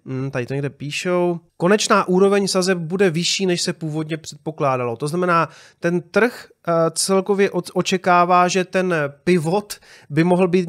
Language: Czech